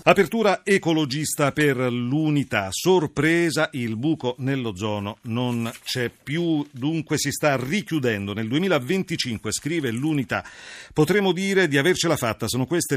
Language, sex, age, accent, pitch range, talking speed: Italian, male, 40-59, native, 120-155 Hz, 120 wpm